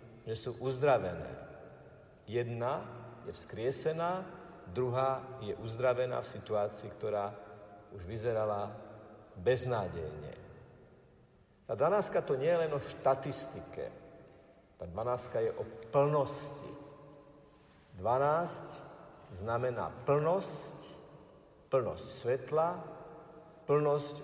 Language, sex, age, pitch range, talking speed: Slovak, male, 50-69, 115-150 Hz, 85 wpm